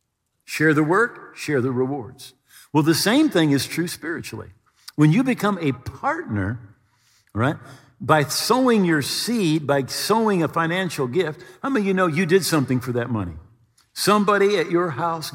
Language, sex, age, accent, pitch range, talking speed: English, male, 50-69, American, 125-180 Hz, 170 wpm